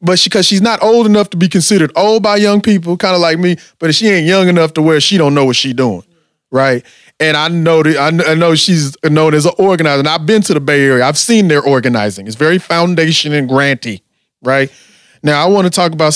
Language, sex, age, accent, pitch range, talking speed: English, male, 20-39, American, 145-205 Hz, 250 wpm